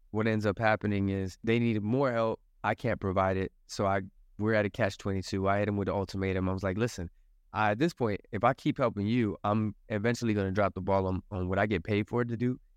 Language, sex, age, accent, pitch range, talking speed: English, male, 20-39, American, 95-110 Hz, 265 wpm